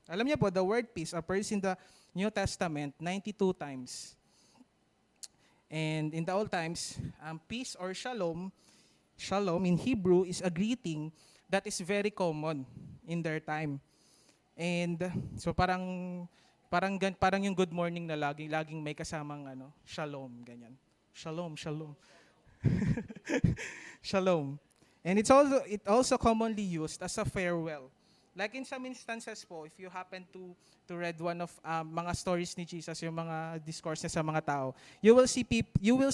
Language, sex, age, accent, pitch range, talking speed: English, male, 20-39, Filipino, 155-195 Hz, 160 wpm